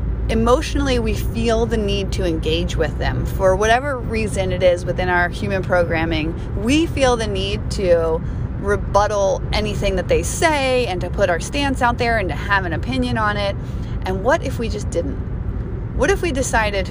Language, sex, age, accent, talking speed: English, female, 30-49, American, 185 wpm